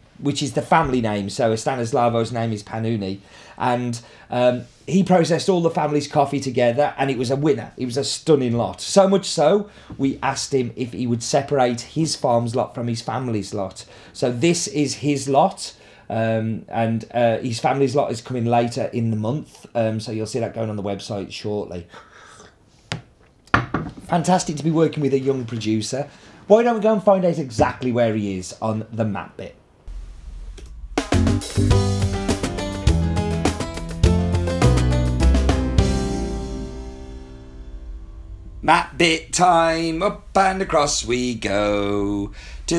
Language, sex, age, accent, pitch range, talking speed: English, male, 30-49, British, 100-145 Hz, 145 wpm